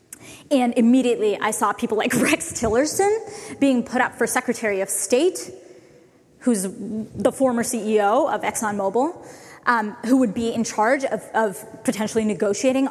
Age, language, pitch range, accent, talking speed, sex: 20-39, English, 225-295 Hz, American, 145 wpm, female